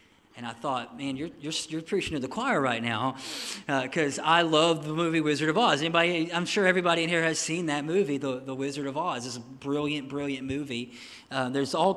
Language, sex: English, male